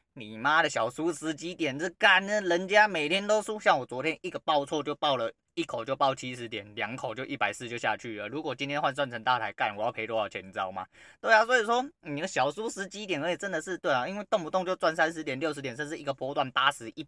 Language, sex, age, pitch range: Chinese, male, 20-39, 120-160 Hz